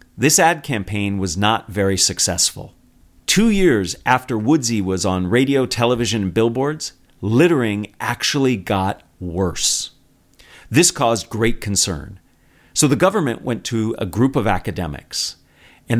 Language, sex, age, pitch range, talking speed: English, male, 40-59, 95-145 Hz, 130 wpm